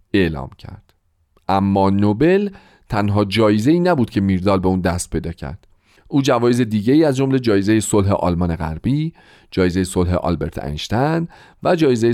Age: 40-59